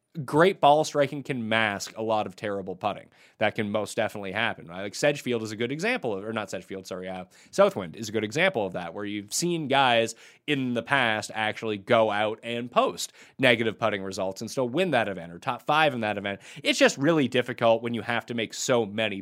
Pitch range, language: 110-145 Hz, English